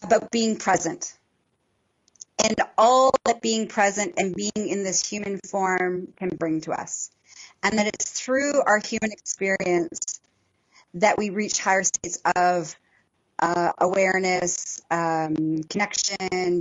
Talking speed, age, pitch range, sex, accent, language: 125 wpm, 30-49, 175-220 Hz, female, American, English